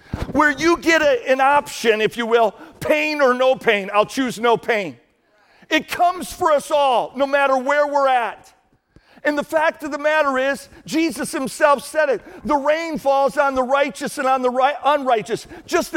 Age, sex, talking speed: 50-69, male, 180 wpm